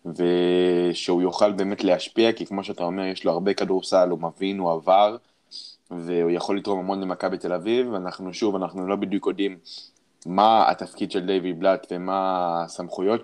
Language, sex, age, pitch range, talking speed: Hebrew, male, 20-39, 90-105 Hz, 165 wpm